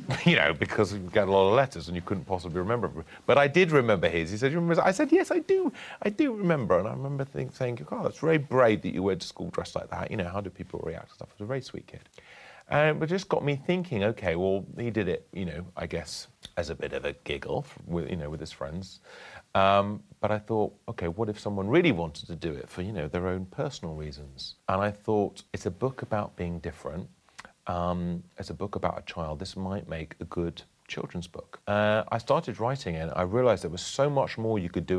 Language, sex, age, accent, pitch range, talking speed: English, male, 30-49, British, 85-115 Hz, 250 wpm